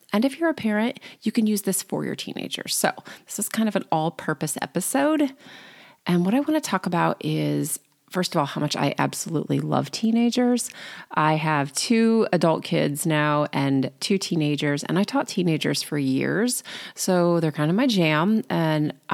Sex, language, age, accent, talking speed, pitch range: female, English, 30-49, American, 185 wpm, 155-220 Hz